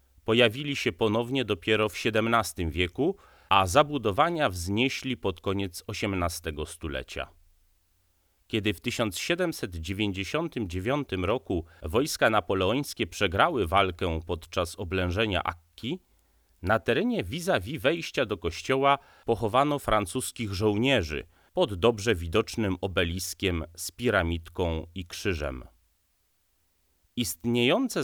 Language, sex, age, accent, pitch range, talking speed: Polish, male, 30-49, native, 85-115 Hz, 95 wpm